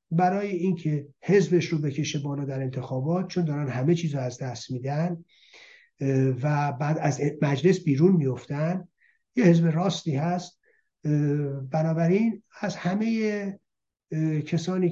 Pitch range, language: 145-185 Hz, Persian